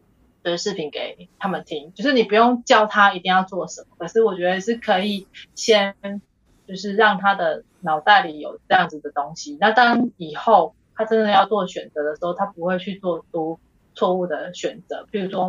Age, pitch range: 20-39, 170-205 Hz